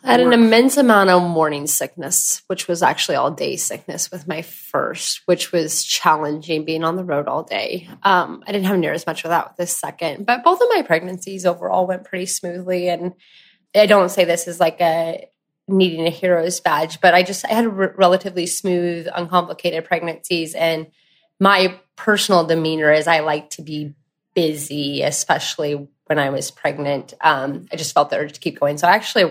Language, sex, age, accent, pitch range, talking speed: English, female, 20-39, American, 155-195 Hz, 200 wpm